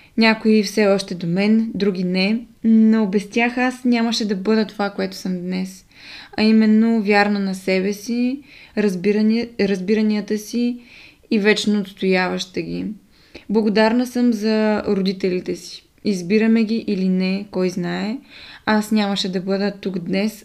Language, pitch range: Bulgarian, 195-225 Hz